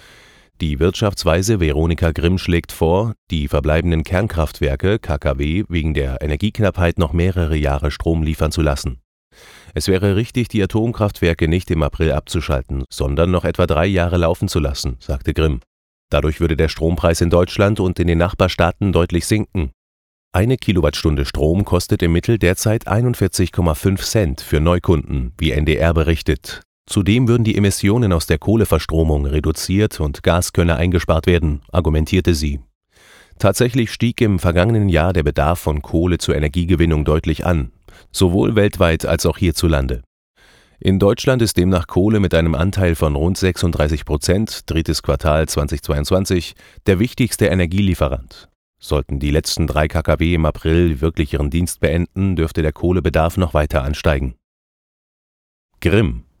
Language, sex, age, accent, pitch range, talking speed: German, male, 30-49, German, 75-95 Hz, 140 wpm